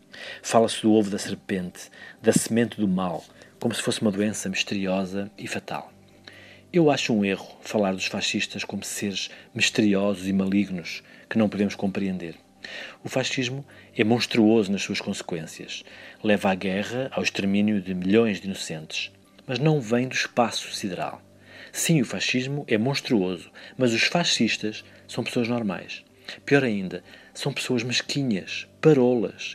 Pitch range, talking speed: 100-130 Hz, 145 wpm